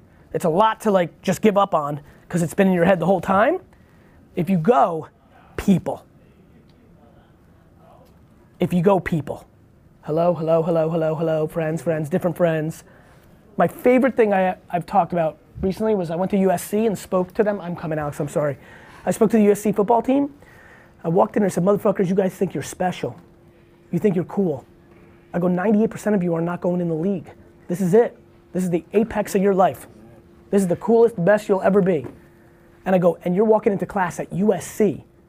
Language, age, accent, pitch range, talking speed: English, 20-39, American, 160-200 Hz, 200 wpm